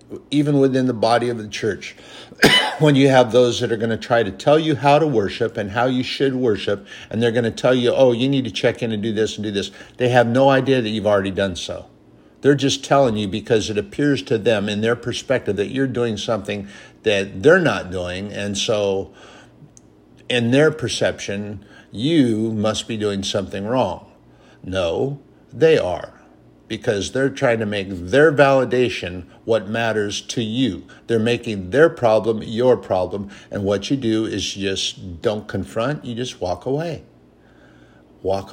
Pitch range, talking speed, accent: 95-125 Hz, 185 wpm, American